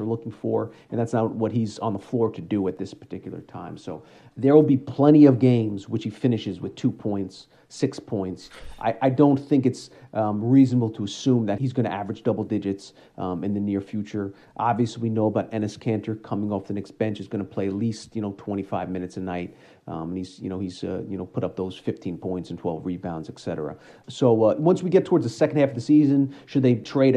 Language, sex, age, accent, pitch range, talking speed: English, male, 40-59, American, 100-125 Hz, 245 wpm